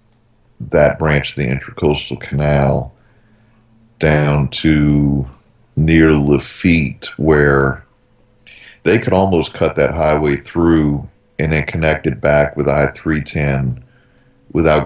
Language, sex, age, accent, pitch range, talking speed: English, male, 40-59, American, 70-105 Hz, 105 wpm